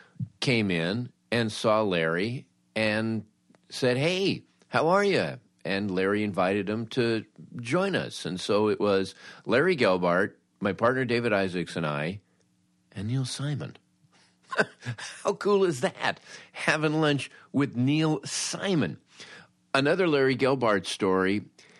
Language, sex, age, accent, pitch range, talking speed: English, male, 50-69, American, 85-125 Hz, 125 wpm